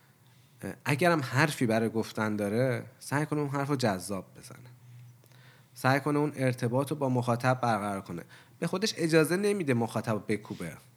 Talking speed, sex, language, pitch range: 150 wpm, male, Persian, 115-145 Hz